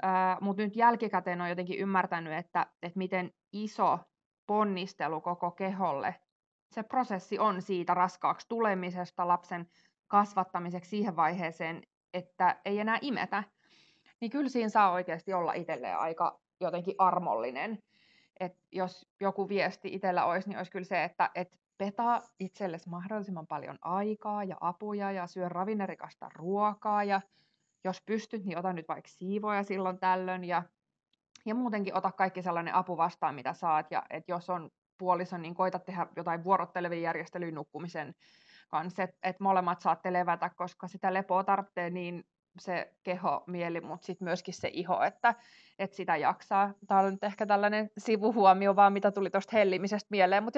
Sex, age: female, 20-39